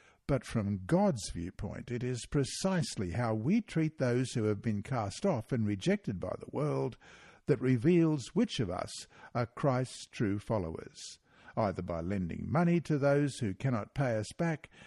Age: 60-79